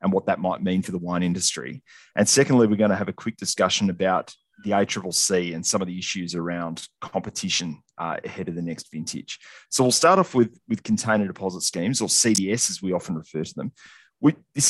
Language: English